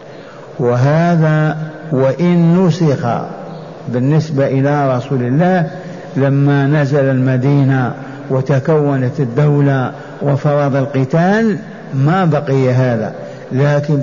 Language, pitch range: Arabic, 140-160 Hz